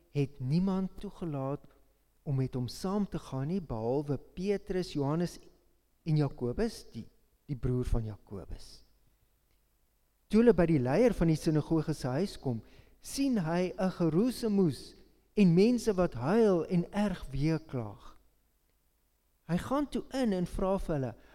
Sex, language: male, English